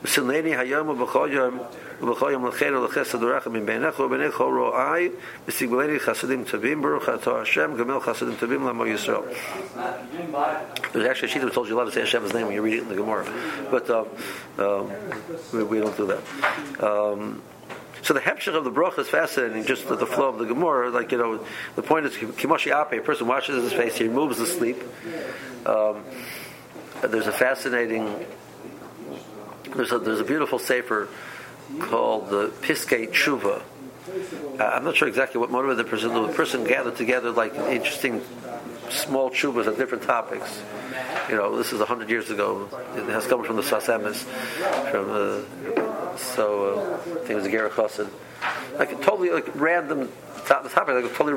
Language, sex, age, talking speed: English, male, 60-79, 145 wpm